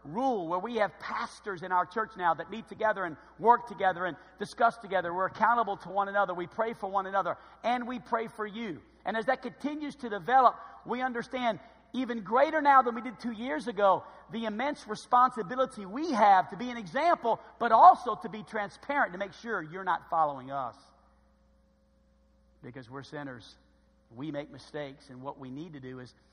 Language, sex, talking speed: English, male, 190 wpm